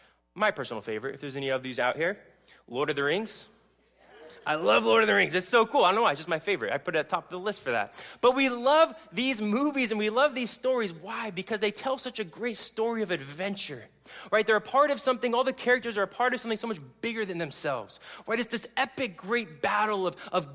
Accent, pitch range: American, 185-240 Hz